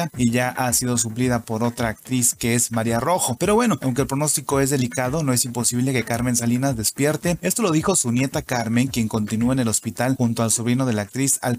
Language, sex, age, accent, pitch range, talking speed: English, male, 30-49, Mexican, 120-140 Hz, 230 wpm